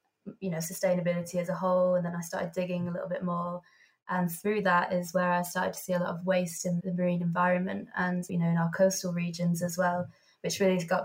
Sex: female